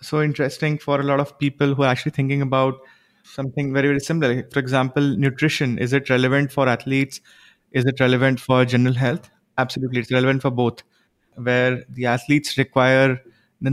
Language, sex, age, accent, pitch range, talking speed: English, male, 20-39, Indian, 125-145 Hz, 175 wpm